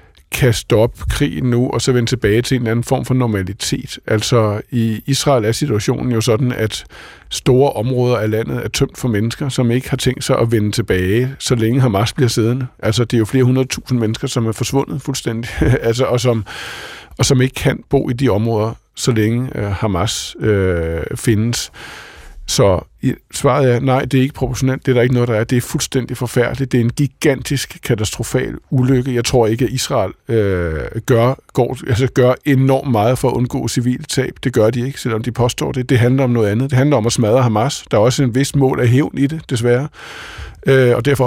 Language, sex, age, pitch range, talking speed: Danish, male, 50-69, 115-135 Hz, 205 wpm